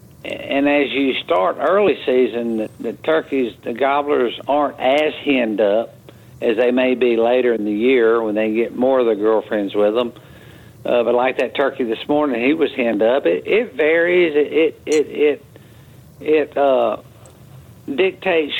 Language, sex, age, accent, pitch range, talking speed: English, male, 60-79, American, 115-155 Hz, 170 wpm